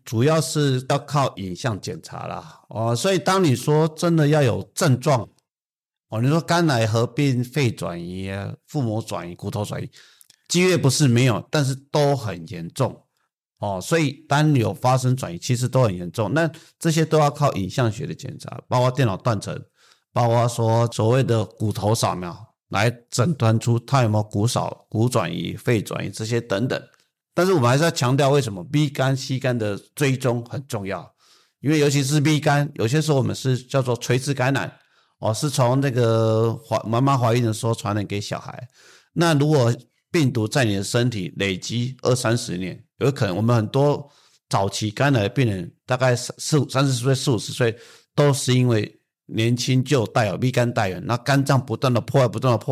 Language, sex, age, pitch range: Chinese, male, 50-69, 115-145 Hz